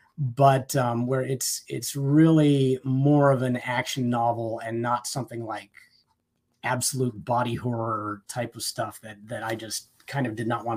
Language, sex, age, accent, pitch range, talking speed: English, male, 30-49, American, 120-145 Hz, 165 wpm